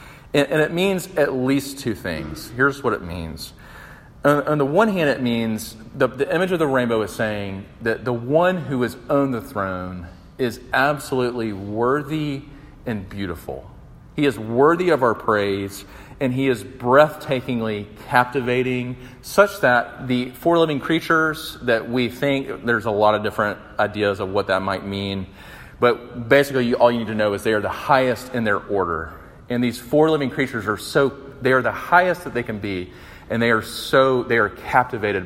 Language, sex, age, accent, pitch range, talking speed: English, male, 40-59, American, 105-140 Hz, 180 wpm